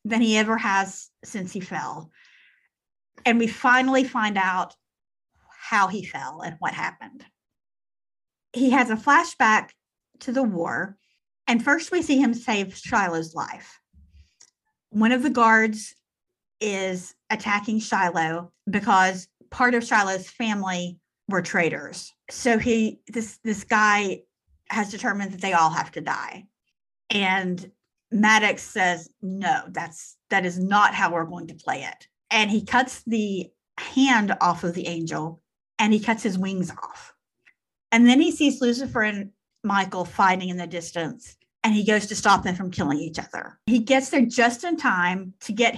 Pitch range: 180-235 Hz